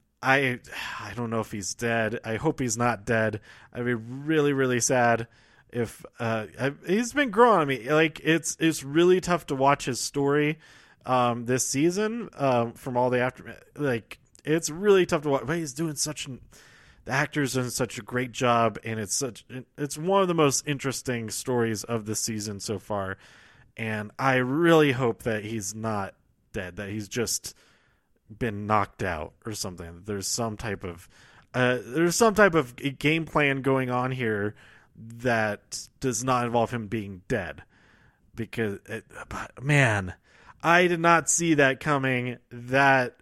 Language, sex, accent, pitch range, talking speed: English, male, American, 115-160 Hz, 170 wpm